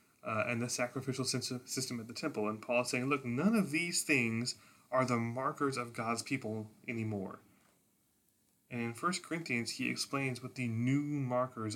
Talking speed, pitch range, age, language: 175 wpm, 110-140 Hz, 20-39, English